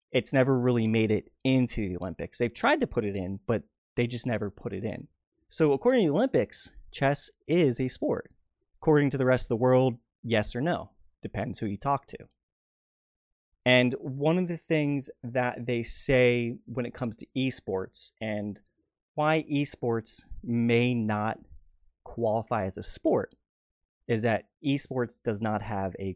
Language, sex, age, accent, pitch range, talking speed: English, male, 30-49, American, 100-125 Hz, 170 wpm